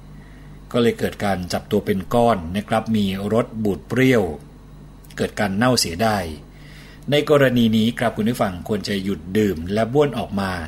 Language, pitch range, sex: Thai, 100-120 Hz, male